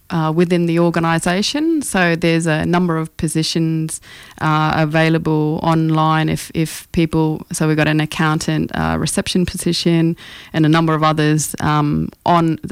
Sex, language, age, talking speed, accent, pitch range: female, English, 20-39, 145 wpm, Australian, 155-175 Hz